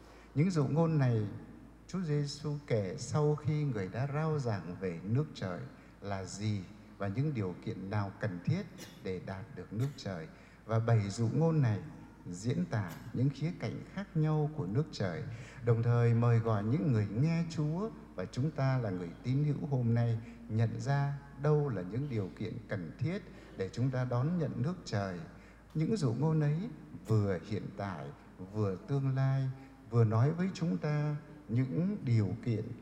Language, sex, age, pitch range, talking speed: English, male, 60-79, 110-150 Hz, 175 wpm